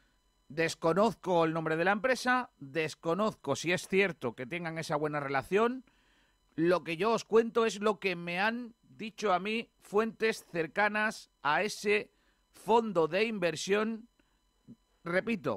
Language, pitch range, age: Spanish, 150-195 Hz, 40-59